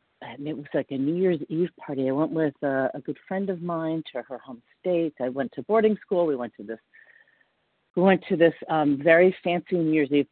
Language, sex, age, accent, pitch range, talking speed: English, female, 50-69, American, 135-185 Hz, 240 wpm